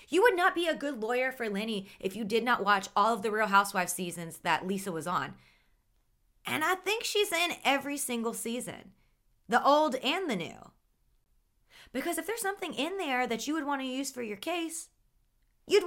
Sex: female